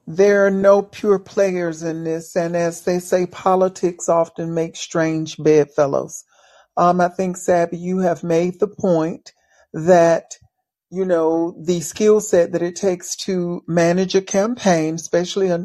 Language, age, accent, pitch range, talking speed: English, 50-69, American, 160-180 Hz, 150 wpm